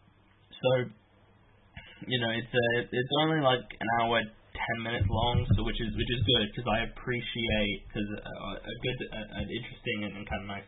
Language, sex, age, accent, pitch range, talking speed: English, male, 10-29, Australian, 95-105 Hz, 180 wpm